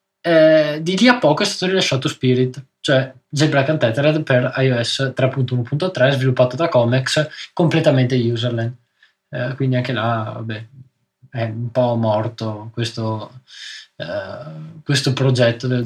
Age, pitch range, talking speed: 20-39, 130-170 Hz, 130 wpm